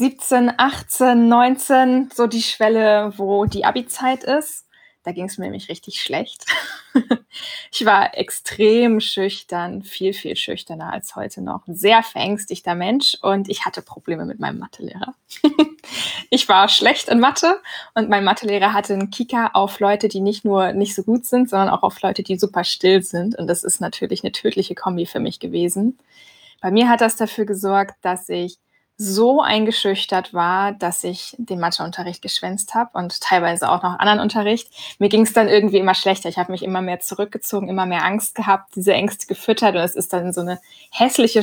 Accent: German